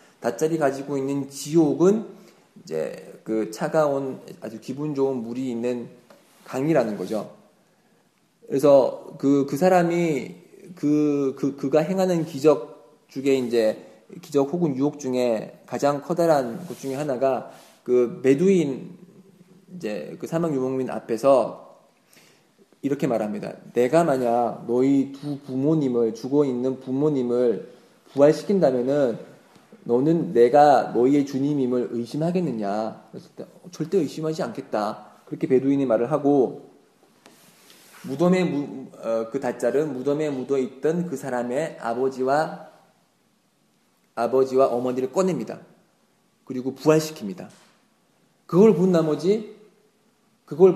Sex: male